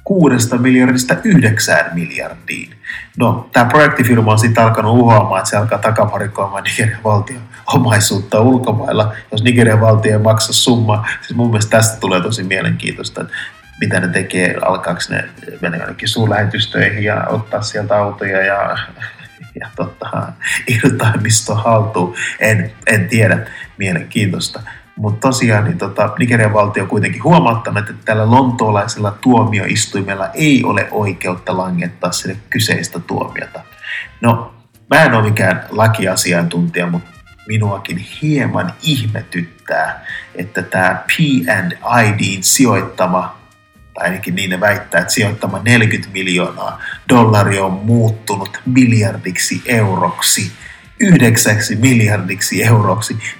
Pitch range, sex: 95-120 Hz, male